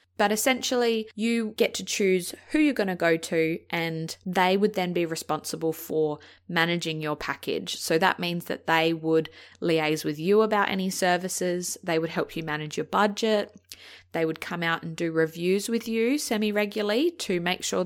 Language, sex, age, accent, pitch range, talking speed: English, female, 20-39, Australian, 160-205 Hz, 180 wpm